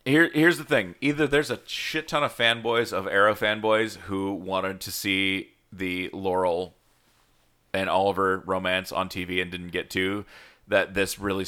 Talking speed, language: 165 wpm, English